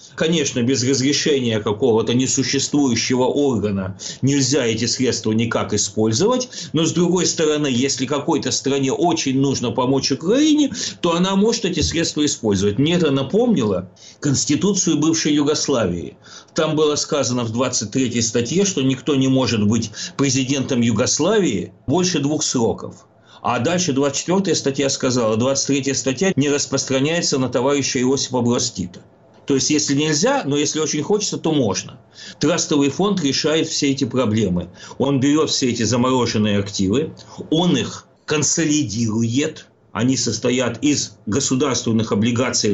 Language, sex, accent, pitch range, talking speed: Russian, male, native, 115-150 Hz, 130 wpm